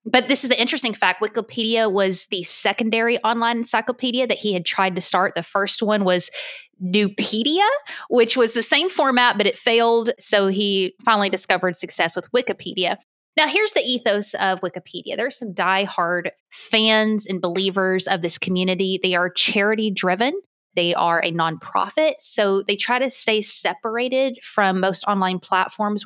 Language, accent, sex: English, American, female